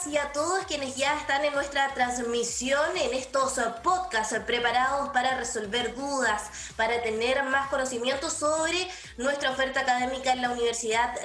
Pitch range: 235-285 Hz